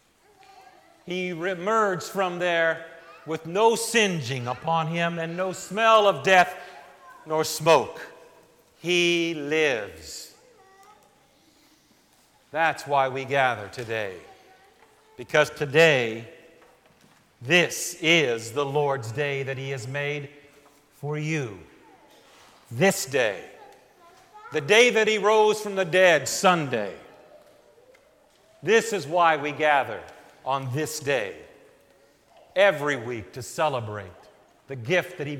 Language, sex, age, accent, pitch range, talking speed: English, male, 50-69, American, 145-205 Hz, 105 wpm